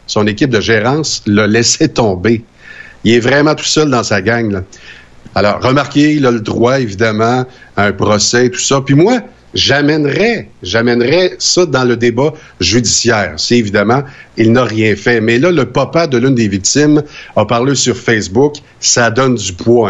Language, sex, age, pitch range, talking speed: French, male, 60-79, 110-145 Hz, 180 wpm